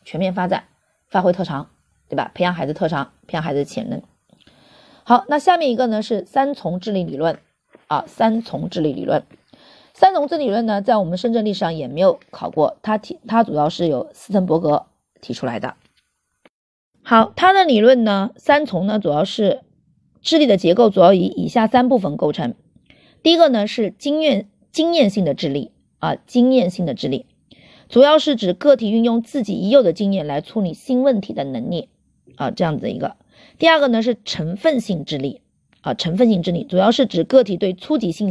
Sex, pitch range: female, 180-260 Hz